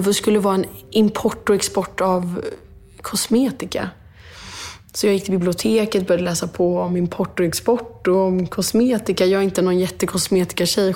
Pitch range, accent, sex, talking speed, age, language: 170-205 Hz, Swedish, female, 160 wpm, 20-39, English